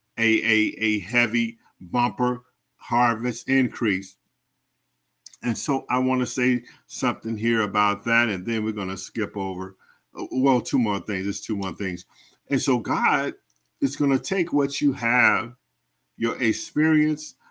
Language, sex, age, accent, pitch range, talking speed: English, male, 50-69, American, 105-125 Hz, 150 wpm